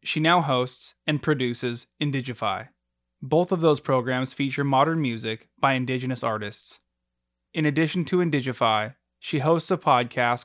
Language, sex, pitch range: English, male, 110-155 Hz